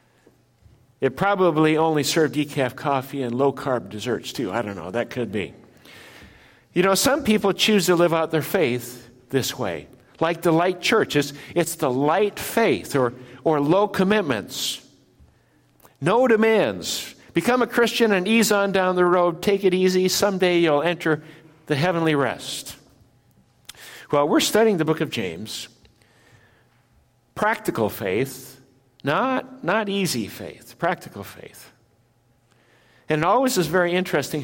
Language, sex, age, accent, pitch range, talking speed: English, male, 60-79, American, 130-180 Hz, 140 wpm